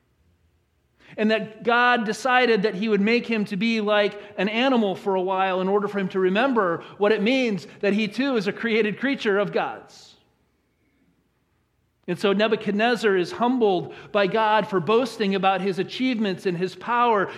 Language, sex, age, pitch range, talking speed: English, male, 40-59, 155-210 Hz, 175 wpm